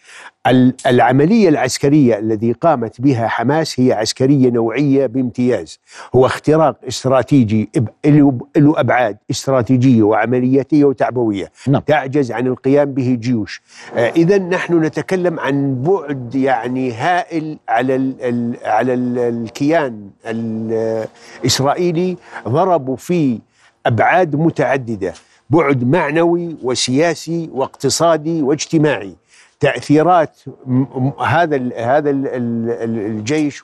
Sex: male